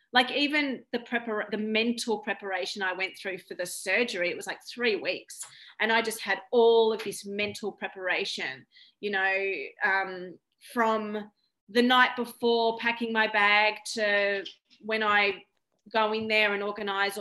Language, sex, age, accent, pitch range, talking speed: English, female, 30-49, Australian, 195-240 Hz, 155 wpm